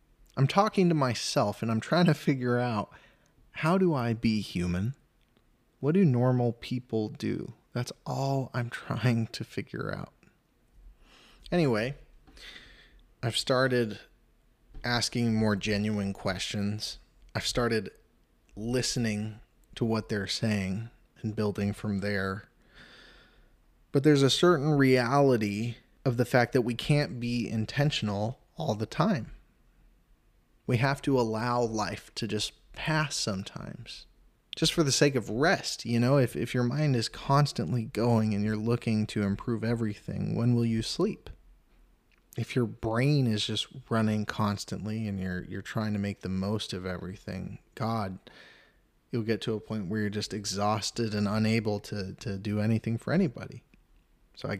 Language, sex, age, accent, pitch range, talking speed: English, male, 20-39, American, 105-125 Hz, 145 wpm